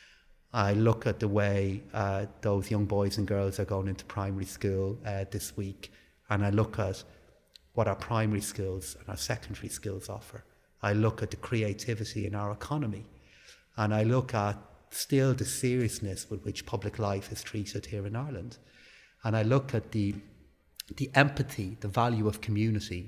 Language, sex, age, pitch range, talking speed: English, male, 30-49, 100-115 Hz, 175 wpm